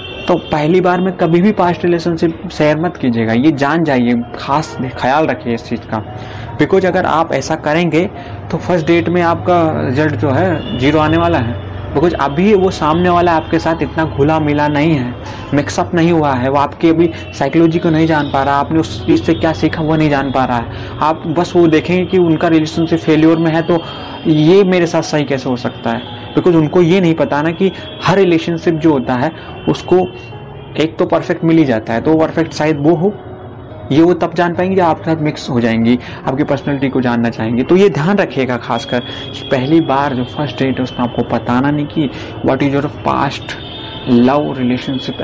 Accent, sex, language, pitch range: native, male, Hindi, 125-165 Hz